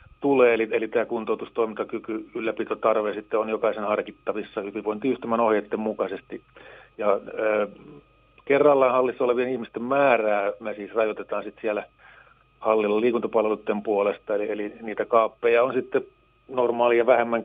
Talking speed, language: 125 wpm, Finnish